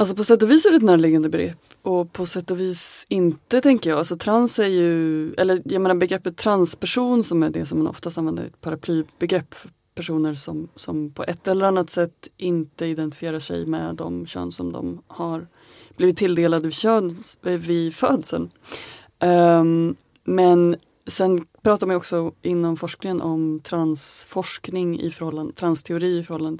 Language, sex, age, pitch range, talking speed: Swedish, female, 30-49, 155-180 Hz, 170 wpm